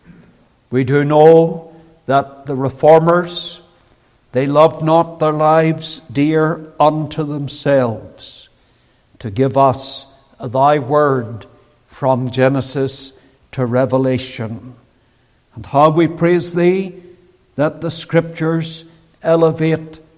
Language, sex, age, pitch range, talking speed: English, male, 60-79, 135-170 Hz, 95 wpm